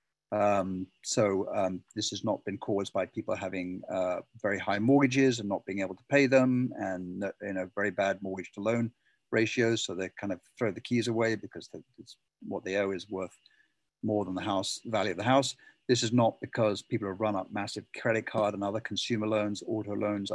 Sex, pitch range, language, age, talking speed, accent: male, 100-130 Hz, English, 50-69, 210 wpm, British